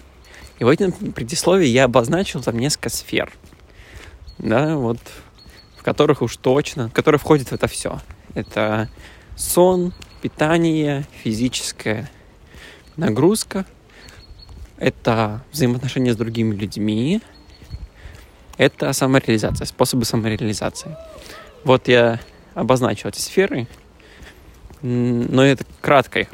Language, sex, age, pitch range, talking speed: Russian, male, 20-39, 105-140 Hz, 100 wpm